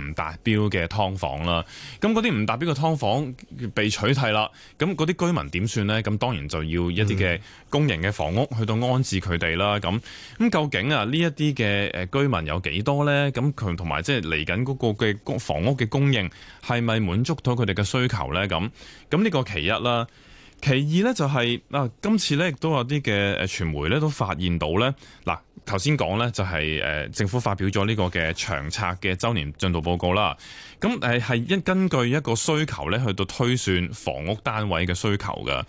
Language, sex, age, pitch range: Chinese, male, 20-39, 95-140 Hz